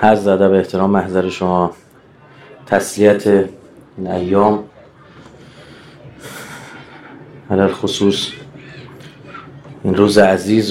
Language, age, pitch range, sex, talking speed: Persian, 30-49, 100-130 Hz, male, 75 wpm